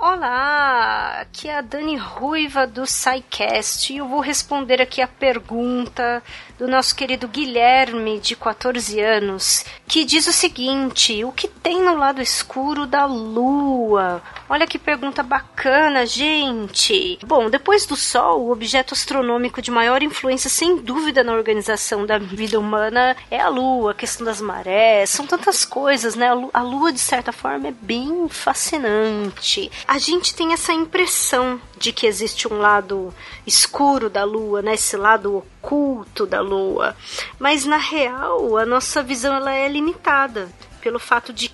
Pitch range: 220-285 Hz